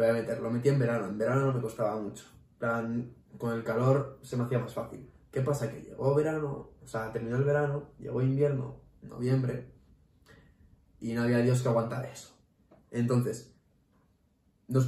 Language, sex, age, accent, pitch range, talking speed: Spanish, male, 20-39, Spanish, 115-140 Hz, 175 wpm